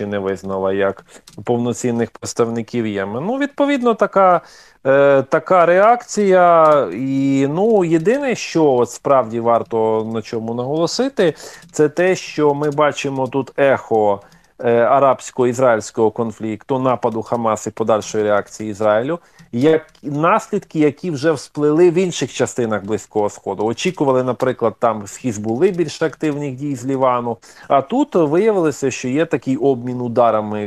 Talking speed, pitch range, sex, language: 125 wpm, 115-155 Hz, male, Ukrainian